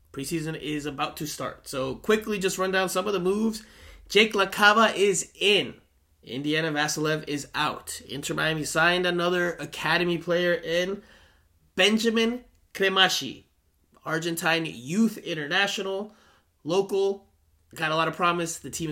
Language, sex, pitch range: English, male, 140-200 Hz